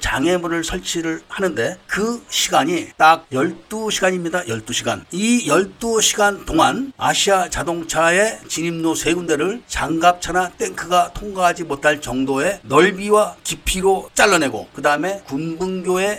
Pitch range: 135-195 Hz